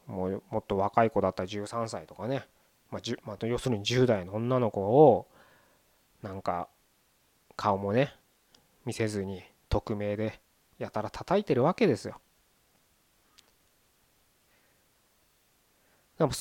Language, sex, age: Japanese, male, 20-39